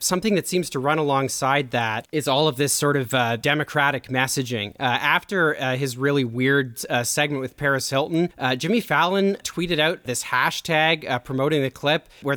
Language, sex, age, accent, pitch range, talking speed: English, male, 30-49, American, 125-155 Hz, 190 wpm